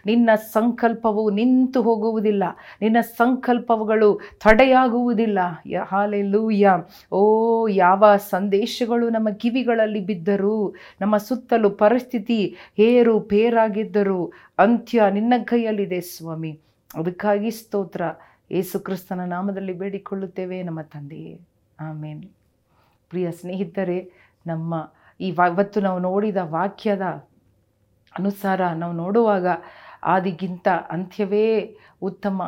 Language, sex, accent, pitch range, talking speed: Kannada, female, native, 180-220 Hz, 80 wpm